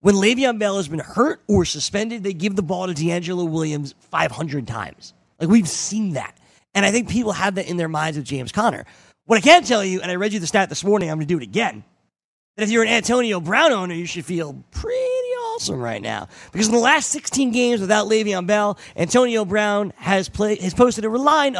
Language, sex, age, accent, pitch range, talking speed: English, male, 30-49, American, 160-225 Hz, 230 wpm